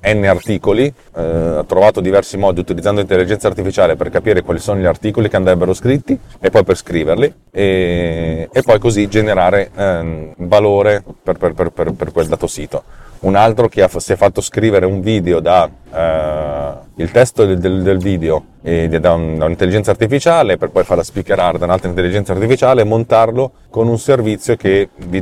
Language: Italian